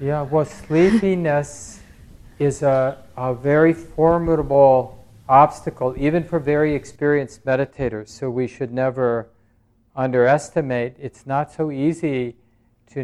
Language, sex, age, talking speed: English, male, 50-69, 110 wpm